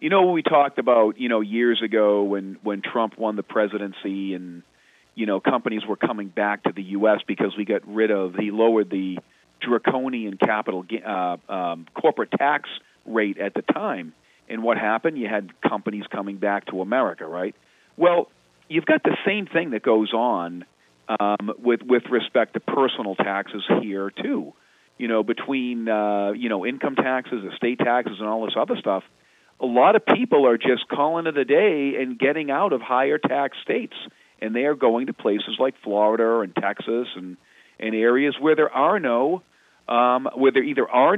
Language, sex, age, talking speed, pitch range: English, male, 40-59, 185 wpm, 105-145 Hz